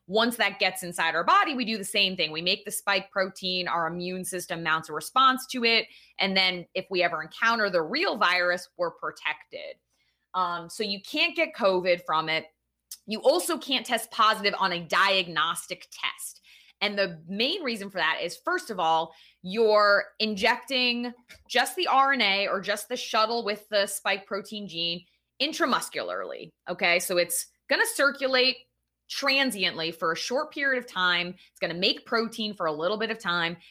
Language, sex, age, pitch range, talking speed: English, female, 20-39, 180-255 Hz, 180 wpm